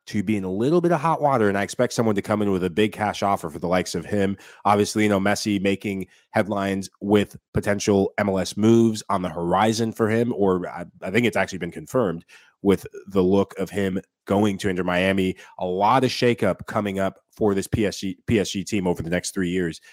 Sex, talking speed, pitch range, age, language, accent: male, 225 wpm, 95-115 Hz, 30-49, English, American